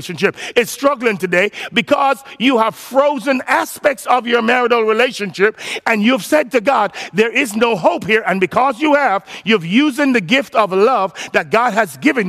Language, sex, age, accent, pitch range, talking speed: English, male, 50-69, American, 195-245 Hz, 185 wpm